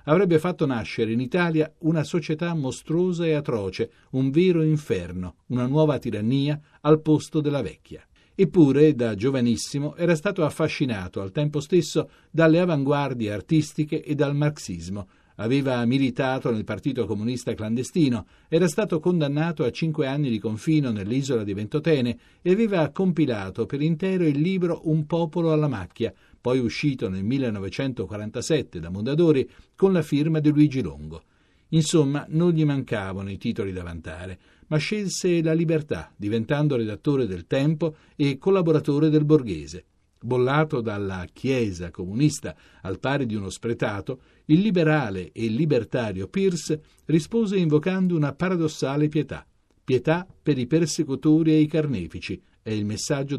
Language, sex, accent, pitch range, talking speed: Italian, male, native, 115-160 Hz, 140 wpm